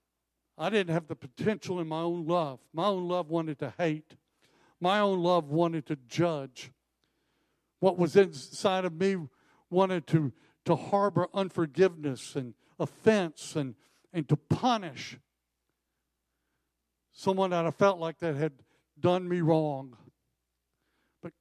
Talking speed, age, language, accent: 135 wpm, 60-79, English, American